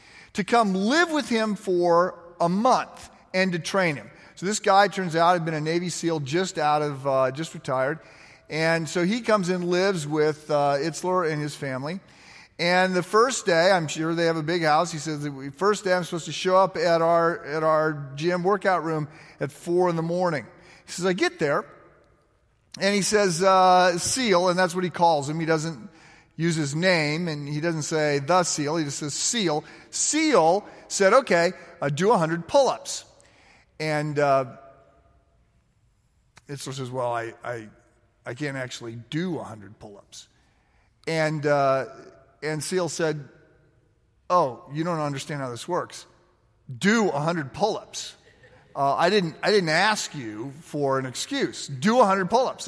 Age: 40-59